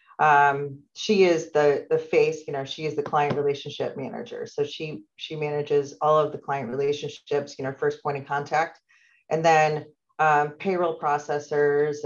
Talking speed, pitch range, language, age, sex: 170 wpm, 145-170 Hz, English, 40-59, female